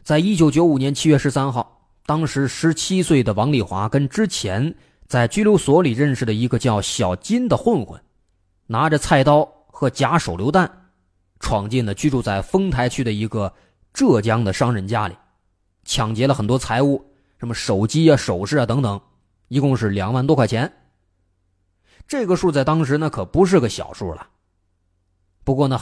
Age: 20-39